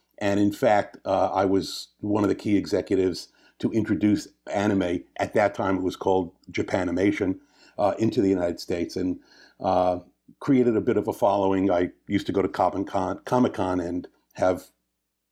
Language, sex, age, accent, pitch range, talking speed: English, male, 50-69, American, 90-105 Hz, 165 wpm